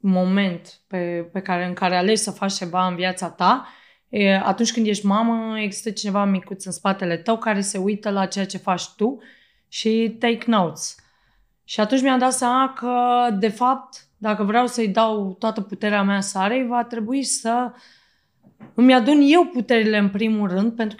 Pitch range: 195-235 Hz